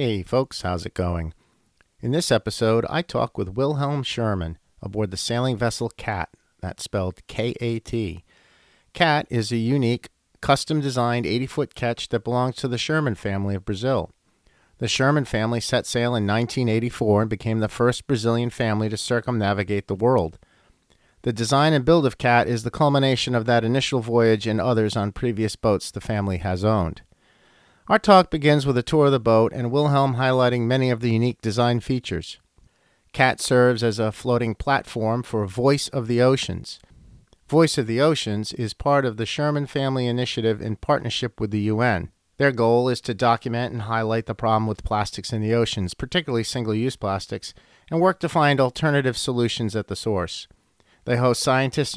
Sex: male